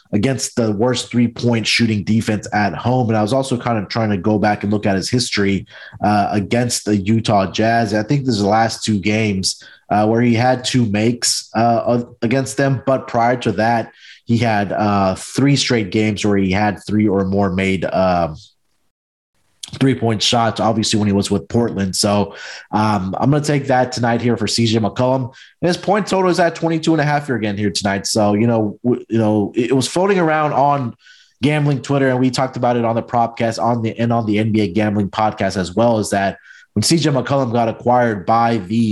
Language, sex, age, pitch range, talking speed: English, male, 30-49, 105-125 Hz, 215 wpm